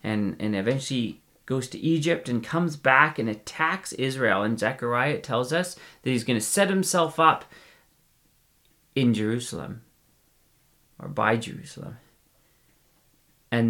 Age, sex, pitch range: 40-59, male, 110-155 Hz